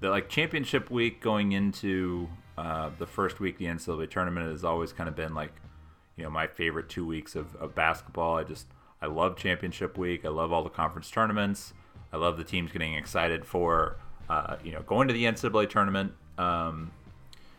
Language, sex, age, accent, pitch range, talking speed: English, male, 30-49, American, 80-100 Hz, 195 wpm